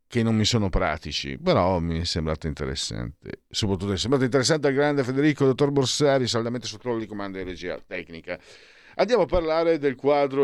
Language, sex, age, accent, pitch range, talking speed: Italian, male, 50-69, native, 95-125 Hz, 185 wpm